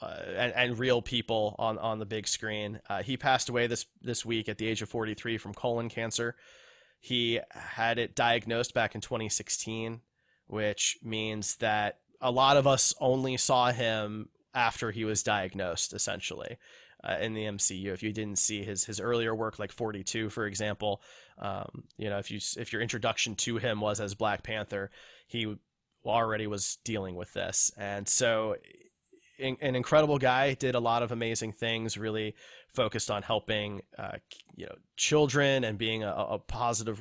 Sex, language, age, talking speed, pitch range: male, English, 20-39, 175 wpm, 105-120 Hz